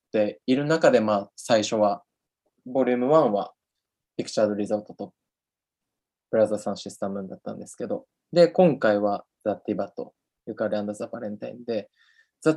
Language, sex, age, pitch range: Japanese, male, 20-39, 105-140 Hz